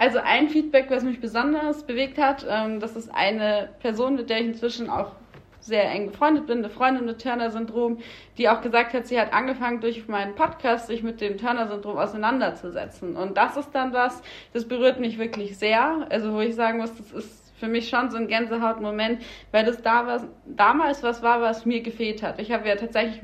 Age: 30-49